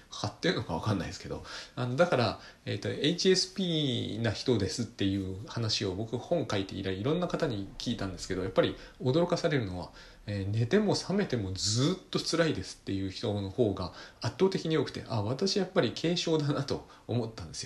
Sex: male